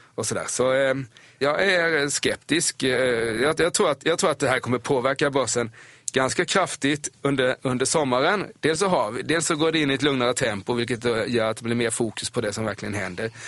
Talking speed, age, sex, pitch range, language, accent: 180 wpm, 30-49, male, 115-140 Hz, Swedish, native